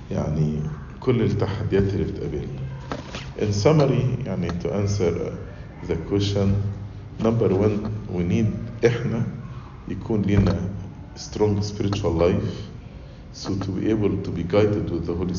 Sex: male